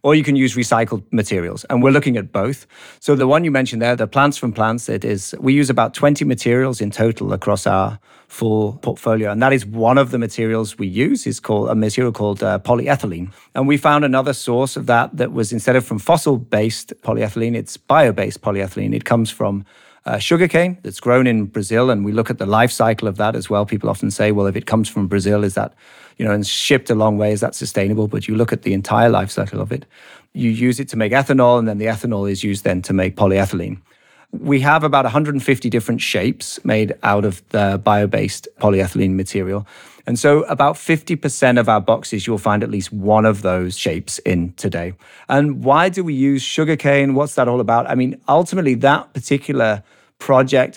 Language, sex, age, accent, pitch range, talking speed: English, male, 30-49, British, 105-130 Hz, 215 wpm